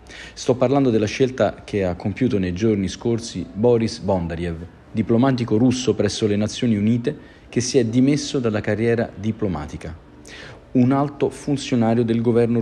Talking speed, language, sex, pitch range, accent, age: 145 wpm, Italian, male, 95-125 Hz, native, 40-59